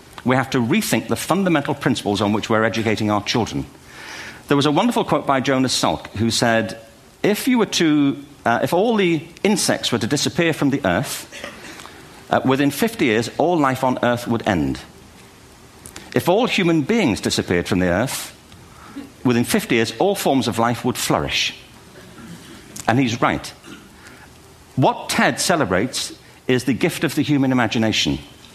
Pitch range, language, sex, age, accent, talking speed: 110-150 Hz, English, male, 50-69, British, 165 wpm